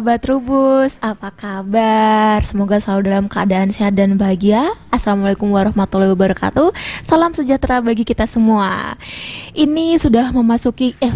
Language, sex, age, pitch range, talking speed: Indonesian, female, 20-39, 220-275 Hz, 120 wpm